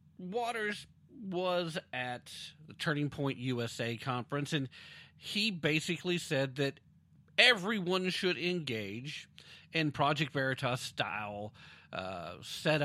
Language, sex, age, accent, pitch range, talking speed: English, male, 50-69, American, 130-175 Hz, 105 wpm